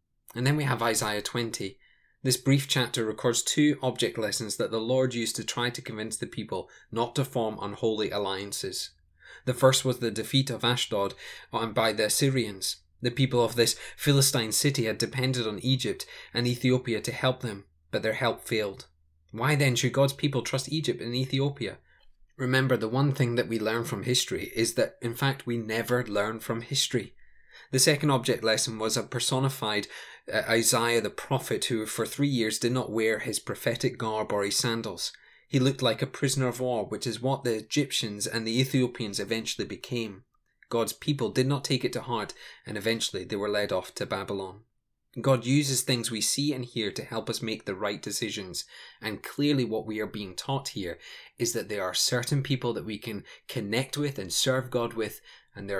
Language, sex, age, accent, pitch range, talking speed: English, male, 20-39, British, 110-130 Hz, 190 wpm